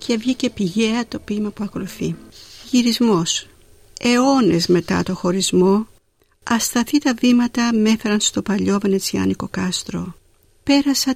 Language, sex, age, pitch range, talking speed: Greek, female, 50-69, 180-245 Hz, 115 wpm